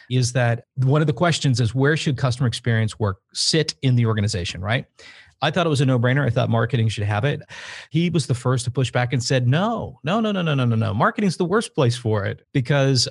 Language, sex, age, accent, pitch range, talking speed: English, male, 40-59, American, 115-140 Hz, 245 wpm